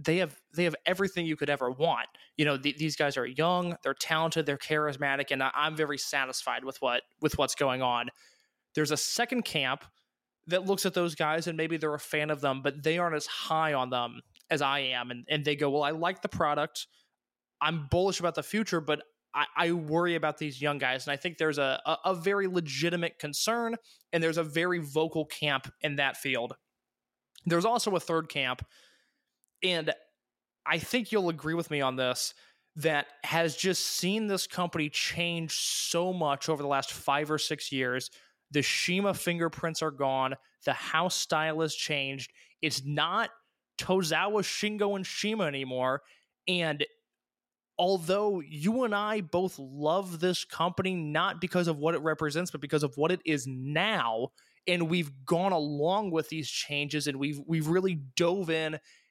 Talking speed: 180 wpm